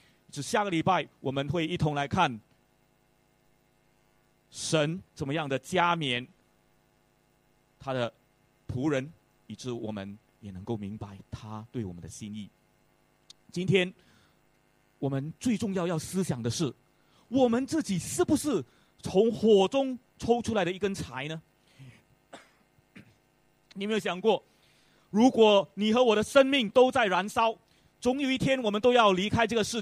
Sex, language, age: male, English, 30-49